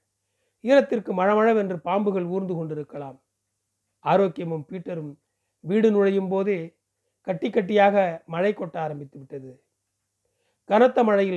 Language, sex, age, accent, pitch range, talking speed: Tamil, male, 40-59, native, 130-195 Hz, 90 wpm